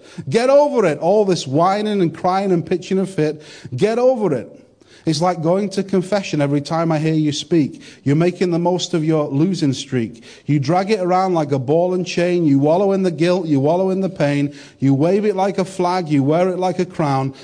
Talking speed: 225 wpm